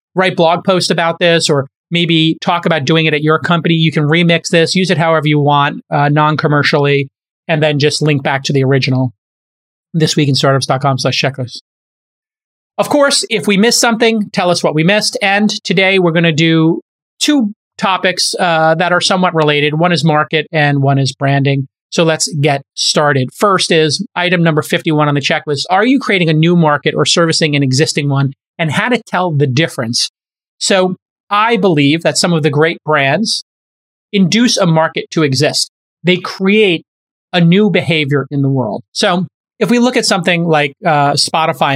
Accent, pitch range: American, 145-185 Hz